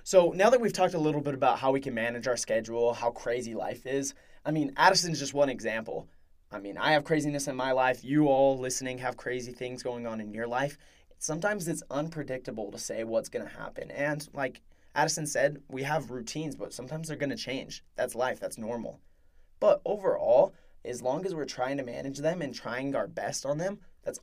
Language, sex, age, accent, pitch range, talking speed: English, male, 20-39, American, 120-150 Hz, 215 wpm